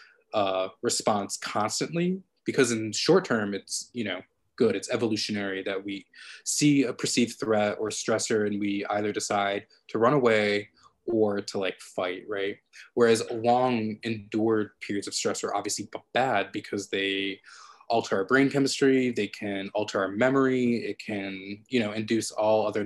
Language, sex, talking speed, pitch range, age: English, male, 155 wpm, 100-130 Hz, 20-39